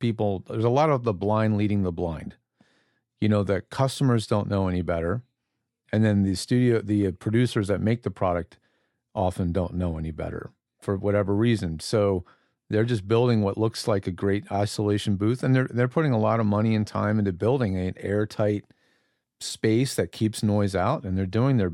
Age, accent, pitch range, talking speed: 40-59, American, 95-115 Hz, 195 wpm